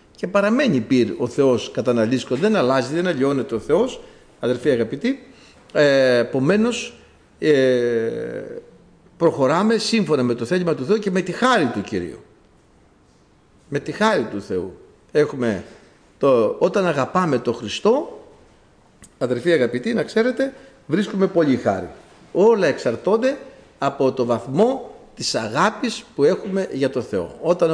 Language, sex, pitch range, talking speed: Greek, male, 135-210 Hz, 130 wpm